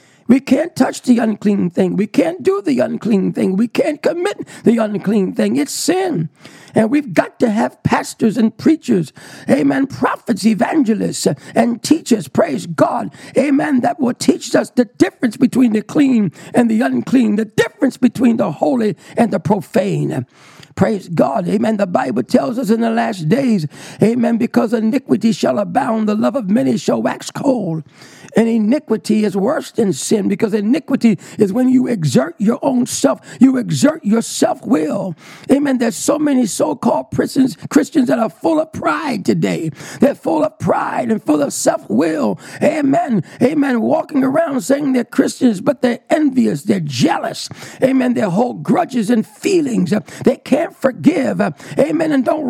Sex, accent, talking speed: male, American, 165 wpm